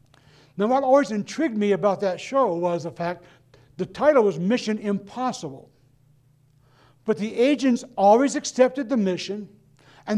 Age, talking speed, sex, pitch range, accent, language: 60-79, 140 wpm, male, 145-220 Hz, American, English